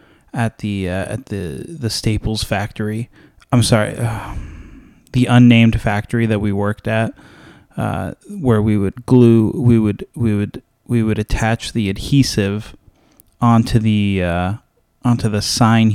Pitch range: 100-115 Hz